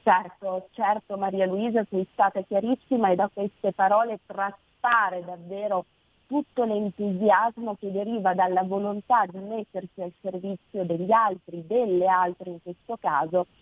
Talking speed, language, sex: 135 wpm, Italian, female